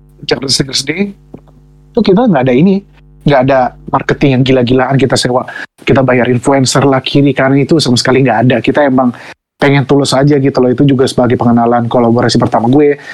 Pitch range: 130-150 Hz